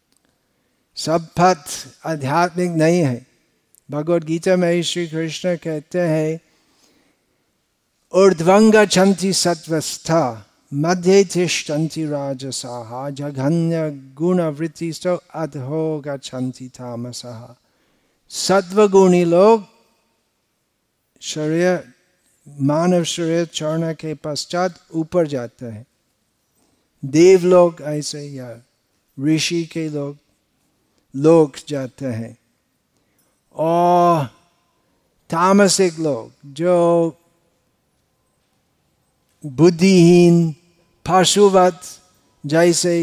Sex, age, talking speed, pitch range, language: male, 50-69, 70 wpm, 145-180 Hz, Hindi